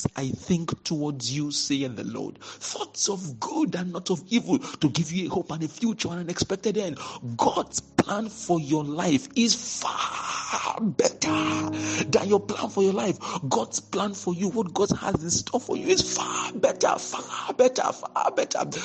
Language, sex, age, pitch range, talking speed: English, male, 50-69, 155-200 Hz, 180 wpm